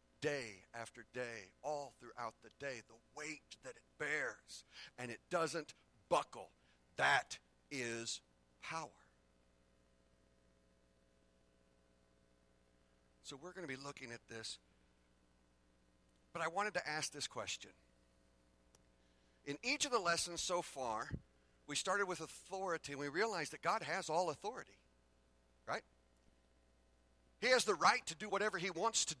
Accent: American